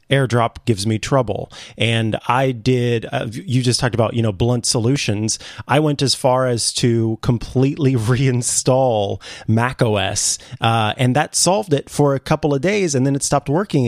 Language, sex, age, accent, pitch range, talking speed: English, male, 30-49, American, 110-135 Hz, 175 wpm